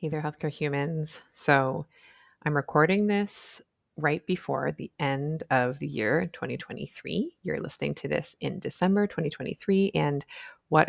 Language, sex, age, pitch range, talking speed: English, female, 30-49, 140-170 Hz, 140 wpm